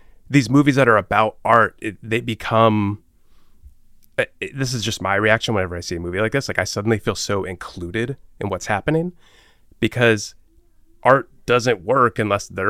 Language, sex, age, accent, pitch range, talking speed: English, male, 30-49, American, 95-115 Hz, 180 wpm